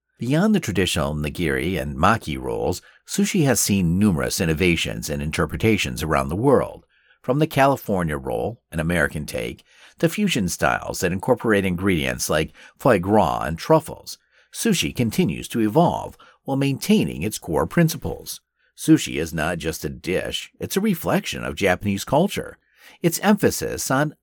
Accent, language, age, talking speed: American, English, 50-69, 145 wpm